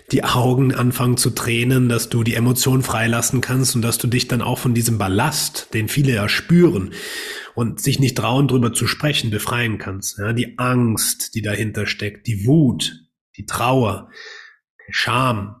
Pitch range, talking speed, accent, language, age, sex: 115-145 Hz, 175 wpm, German, German, 30-49, male